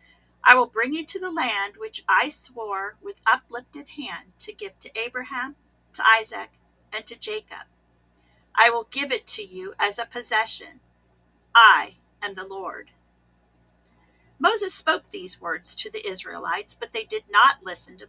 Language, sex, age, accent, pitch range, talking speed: English, female, 40-59, American, 185-300 Hz, 160 wpm